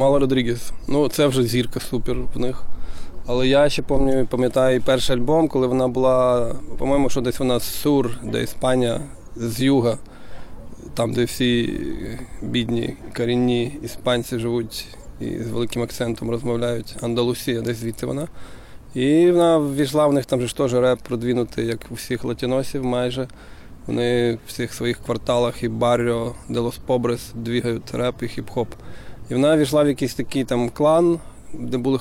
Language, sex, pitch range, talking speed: Ukrainian, male, 120-130 Hz, 155 wpm